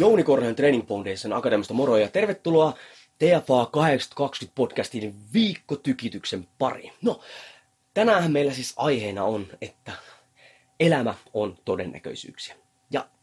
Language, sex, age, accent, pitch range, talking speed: Finnish, male, 30-49, native, 115-160 Hz, 110 wpm